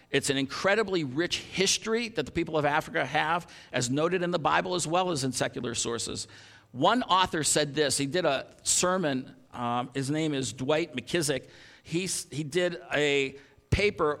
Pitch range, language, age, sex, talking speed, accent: 130-170 Hz, English, 50-69, male, 170 wpm, American